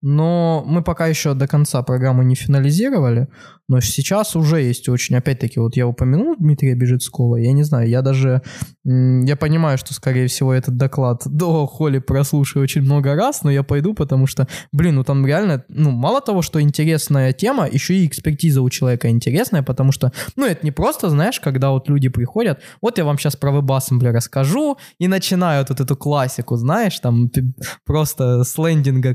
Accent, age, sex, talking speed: native, 20-39, male, 185 wpm